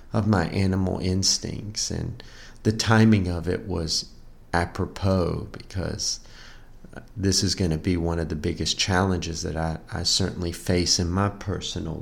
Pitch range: 85-110 Hz